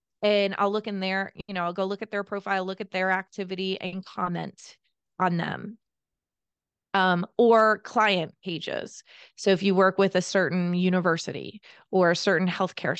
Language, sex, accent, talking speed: English, female, American, 170 wpm